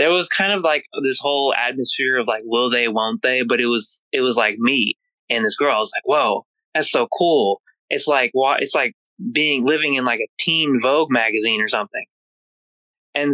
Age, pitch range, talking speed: 20-39, 120-175 Hz, 210 wpm